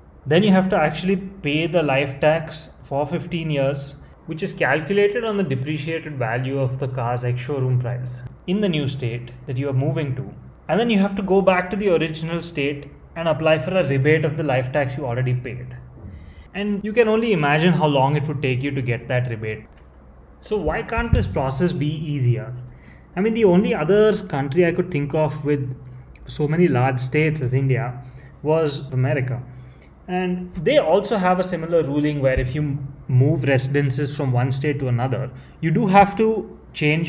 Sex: male